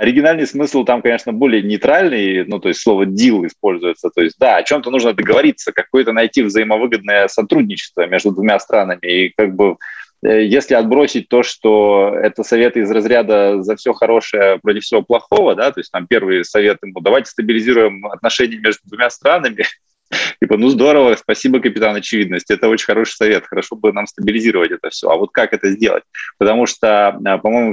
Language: Russian